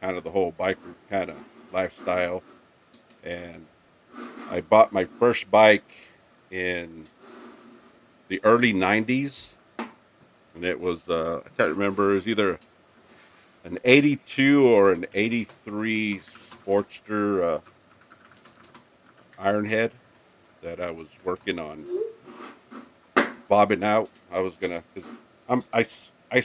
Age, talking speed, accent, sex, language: 50-69, 110 wpm, American, male, English